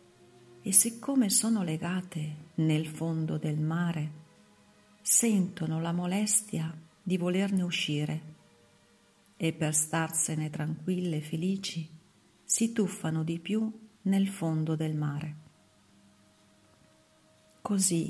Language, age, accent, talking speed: Italian, 50-69, native, 95 wpm